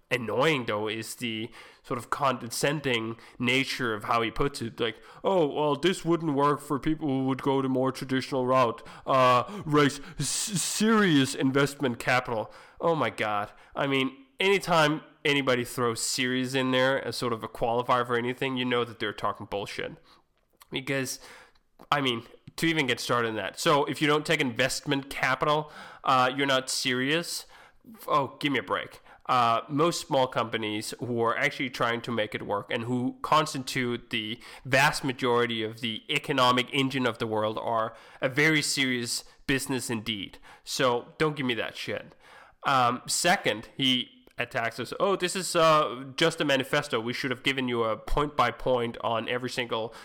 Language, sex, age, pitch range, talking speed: English, male, 20-39, 120-150 Hz, 175 wpm